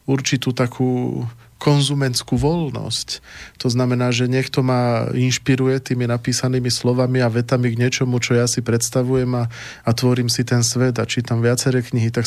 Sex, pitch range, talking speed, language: male, 120-130 Hz, 155 wpm, Slovak